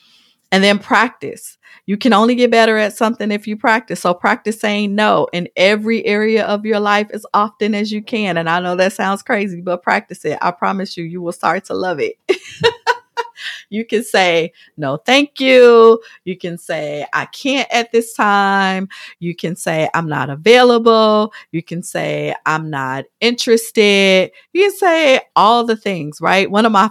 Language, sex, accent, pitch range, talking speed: English, female, American, 170-225 Hz, 185 wpm